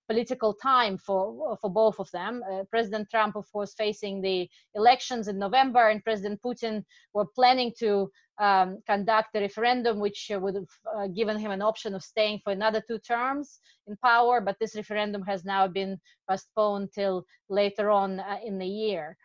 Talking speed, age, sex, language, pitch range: 180 wpm, 20-39, female, English, 200-235 Hz